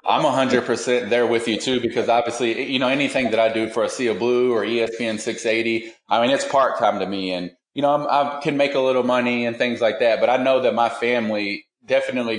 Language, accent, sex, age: English, American, male, 30-49